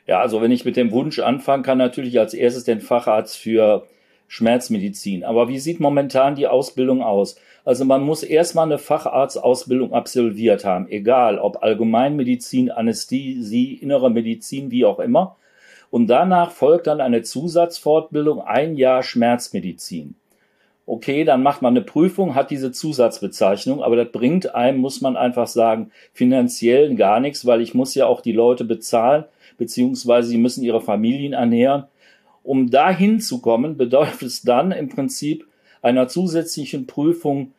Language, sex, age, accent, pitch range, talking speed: German, male, 40-59, German, 120-155 Hz, 150 wpm